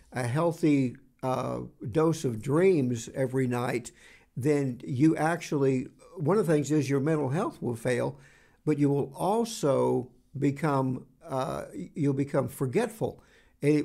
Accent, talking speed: American, 135 wpm